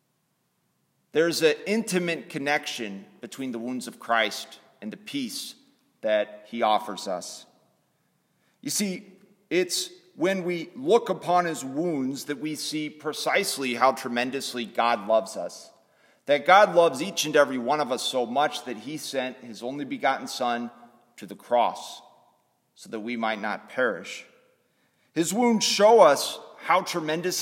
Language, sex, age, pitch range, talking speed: English, male, 30-49, 135-190 Hz, 145 wpm